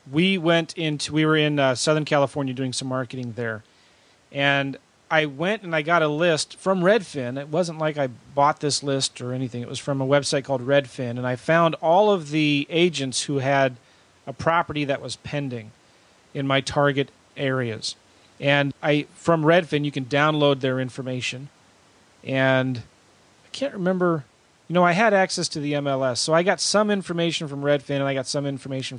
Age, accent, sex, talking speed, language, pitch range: 30-49, American, male, 185 wpm, English, 130-160 Hz